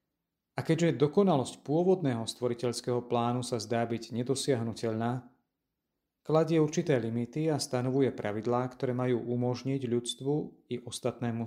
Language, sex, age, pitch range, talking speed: Slovak, male, 40-59, 115-140 Hz, 115 wpm